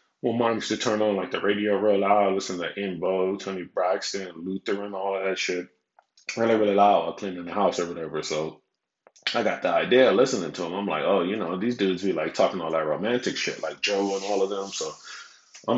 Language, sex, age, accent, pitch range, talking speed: English, male, 20-39, American, 90-105 Hz, 235 wpm